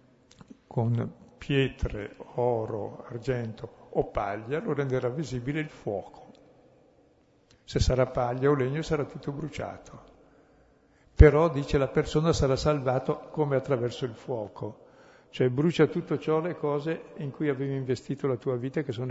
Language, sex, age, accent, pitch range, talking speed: Italian, male, 60-79, native, 115-145 Hz, 140 wpm